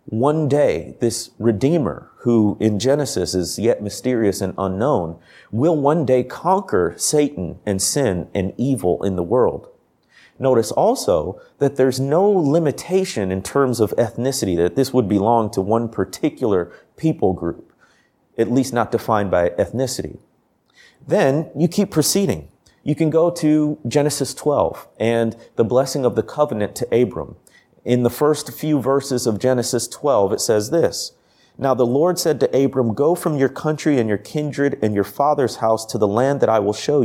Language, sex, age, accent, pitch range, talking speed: English, male, 40-59, American, 105-145 Hz, 165 wpm